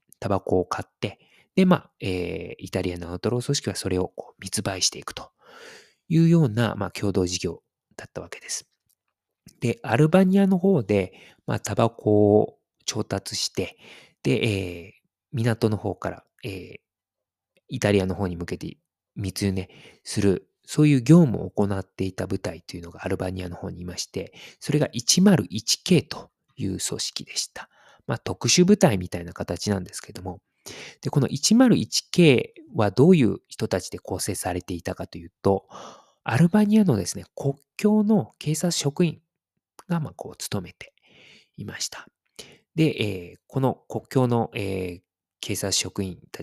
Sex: male